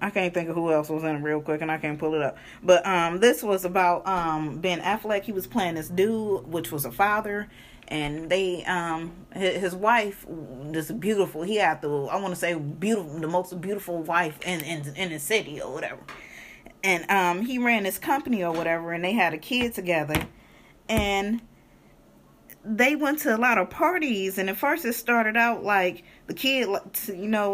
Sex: female